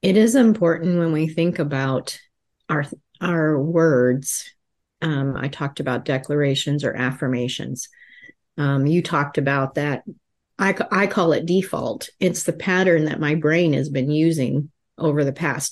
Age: 40-59